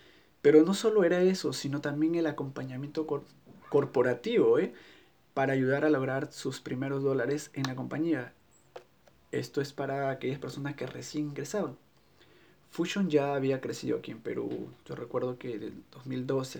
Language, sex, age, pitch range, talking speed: Spanish, male, 20-39, 130-155 Hz, 150 wpm